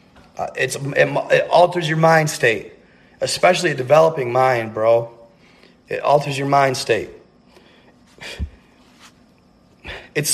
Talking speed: 110 wpm